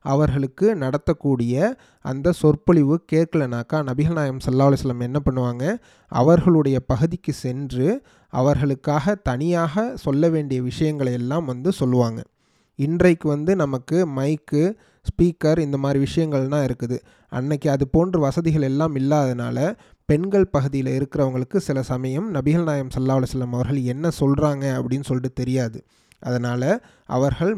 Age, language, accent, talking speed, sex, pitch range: 30-49, Tamil, native, 120 wpm, male, 130-165 Hz